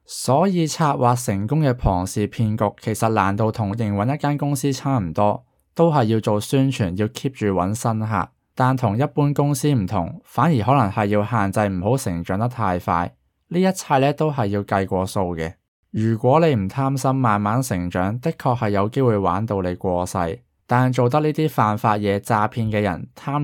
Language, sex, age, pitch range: Chinese, male, 20-39, 100-130 Hz